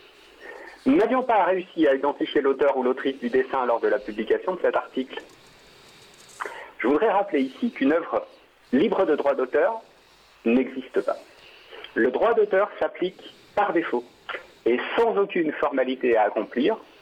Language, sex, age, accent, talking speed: French, male, 50-69, French, 150 wpm